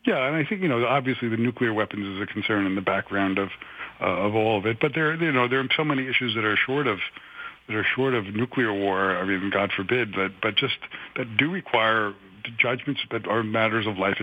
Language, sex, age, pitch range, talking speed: English, male, 50-69, 105-135 Hz, 240 wpm